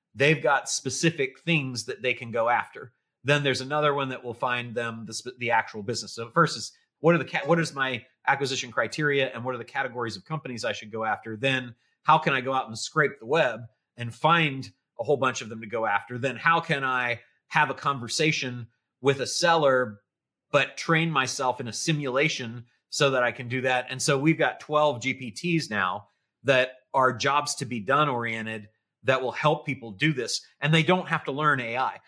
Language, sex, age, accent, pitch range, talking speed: English, male, 30-49, American, 120-155 Hz, 215 wpm